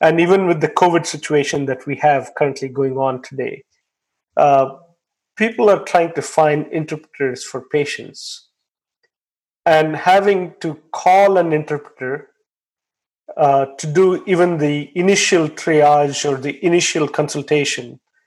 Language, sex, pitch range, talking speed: English, male, 140-175 Hz, 130 wpm